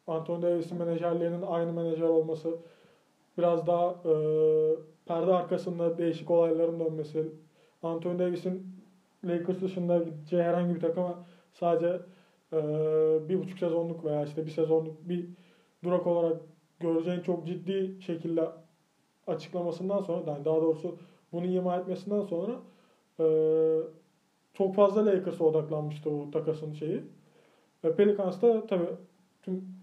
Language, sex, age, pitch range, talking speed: Turkish, male, 20-39, 165-190 Hz, 120 wpm